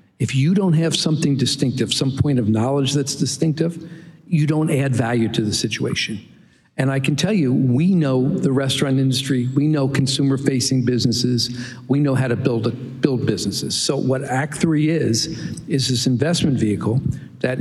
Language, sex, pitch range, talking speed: English, male, 125-145 Hz, 175 wpm